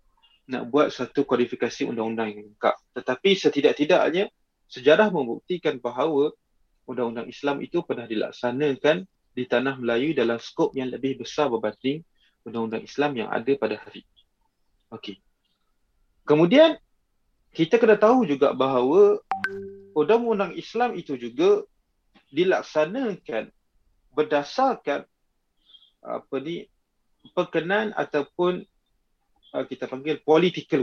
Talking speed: 100 wpm